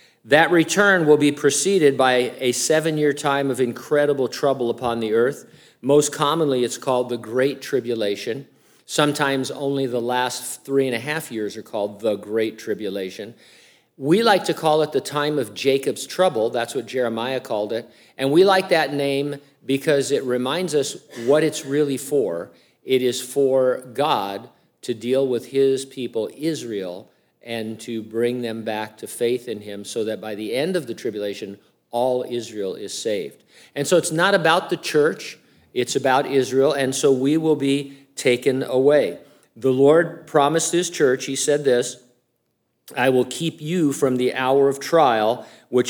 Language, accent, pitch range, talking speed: English, American, 120-150 Hz, 170 wpm